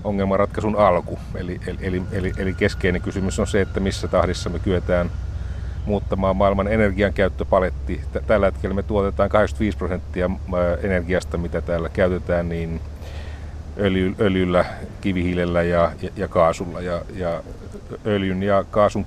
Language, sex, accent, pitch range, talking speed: Finnish, male, native, 85-95 Hz, 130 wpm